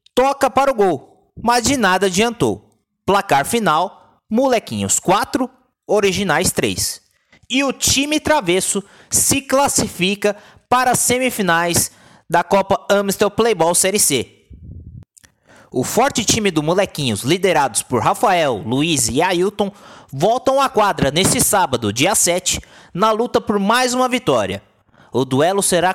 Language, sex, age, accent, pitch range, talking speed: Portuguese, male, 20-39, Brazilian, 170-240 Hz, 130 wpm